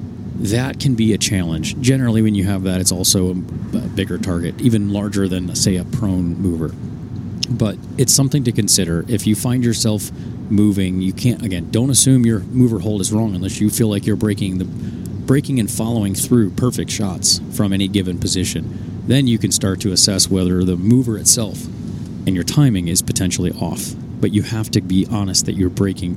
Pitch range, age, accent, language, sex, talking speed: 95-115 Hz, 40-59, American, English, male, 195 wpm